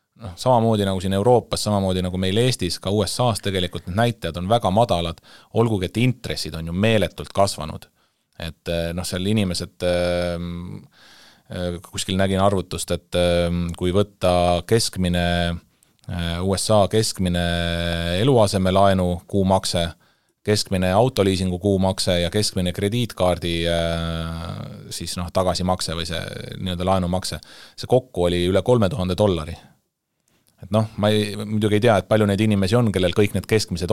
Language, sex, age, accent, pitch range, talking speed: English, male, 30-49, Finnish, 90-105 Hz, 125 wpm